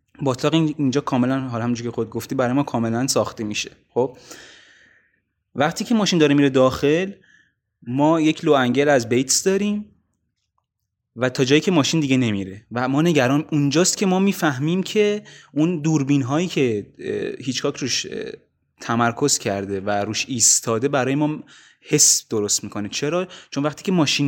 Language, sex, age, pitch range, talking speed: Persian, male, 20-39, 120-155 Hz, 160 wpm